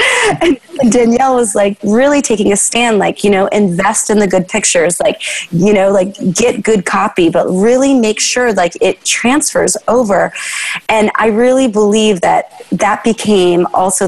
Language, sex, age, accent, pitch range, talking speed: English, female, 30-49, American, 185-230 Hz, 165 wpm